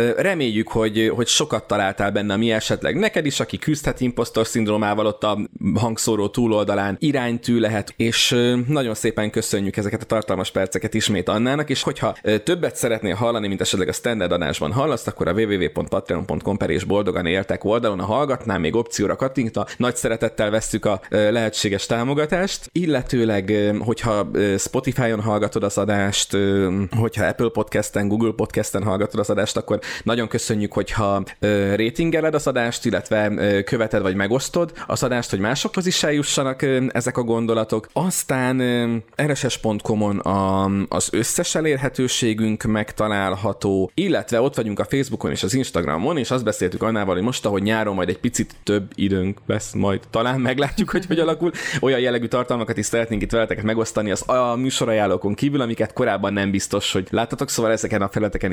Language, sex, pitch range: Hungarian, male, 100-125 Hz